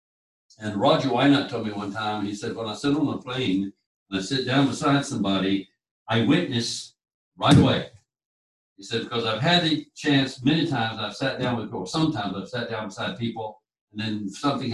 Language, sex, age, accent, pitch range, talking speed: English, male, 60-79, American, 110-145 Hz, 195 wpm